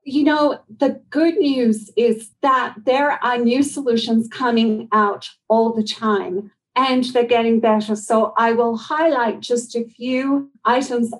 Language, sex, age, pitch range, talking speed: English, female, 40-59, 220-260 Hz, 150 wpm